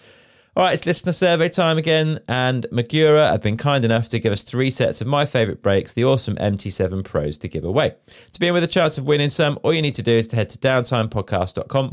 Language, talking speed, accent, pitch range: English, 240 wpm, British, 105-150 Hz